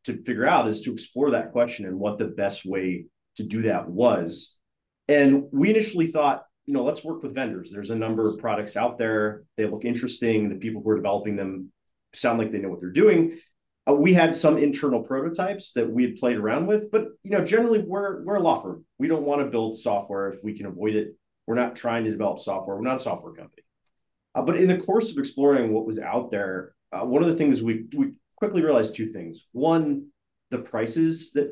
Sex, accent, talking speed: male, American, 225 wpm